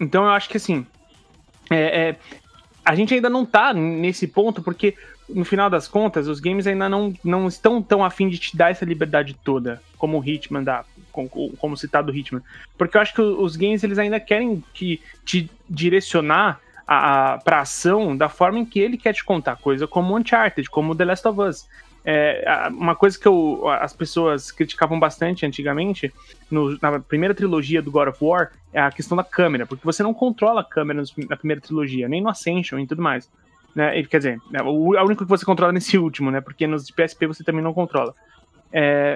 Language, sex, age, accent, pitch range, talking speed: Portuguese, male, 20-39, Brazilian, 150-200 Hz, 205 wpm